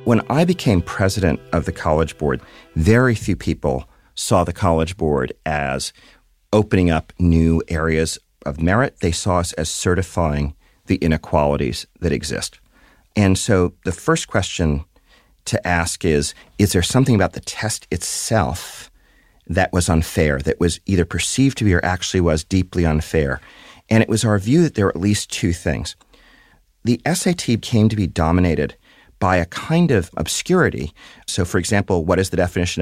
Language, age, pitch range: English, 40-59, 85-110 Hz